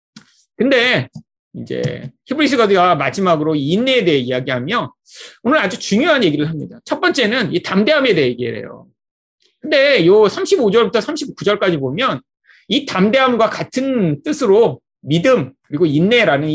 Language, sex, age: Korean, male, 30-49